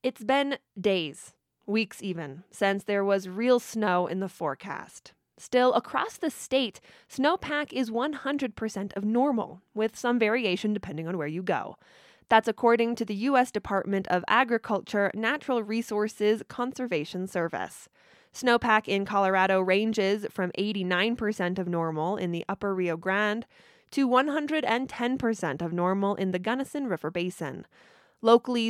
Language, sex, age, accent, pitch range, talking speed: English, female, 20-39, American, 185-235 Hz, 135 wpm